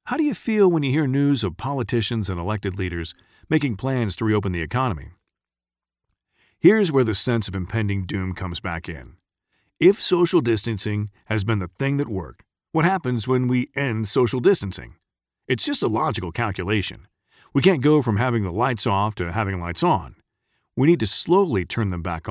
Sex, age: male, 40-59